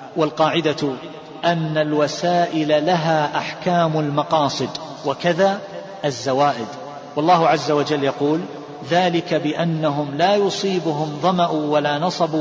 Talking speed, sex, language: 90 wpm, male, Arabic